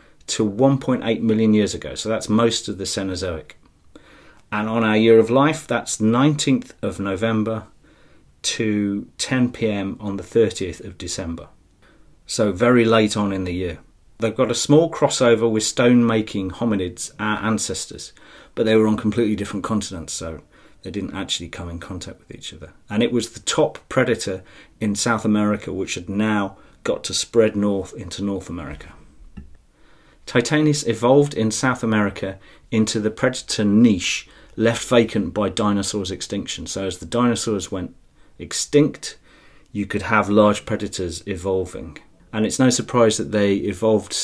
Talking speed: 155 wpm